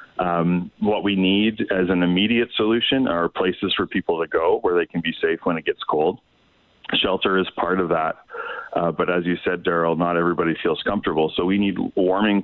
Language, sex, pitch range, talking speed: English, male, 85-100 Hz, 205 wpm